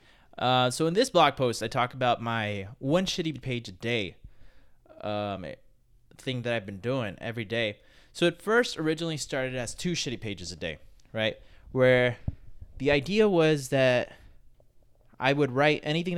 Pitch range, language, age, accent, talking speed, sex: 115-150 Hz, English, 20-39, American, 165 wpm, male